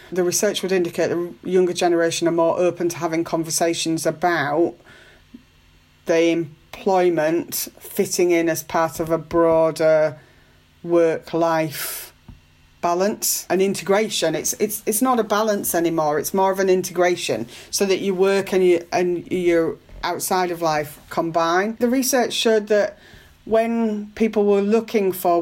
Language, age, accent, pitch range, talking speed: English, 40-59, British, 160-185 Hz, 140 wpm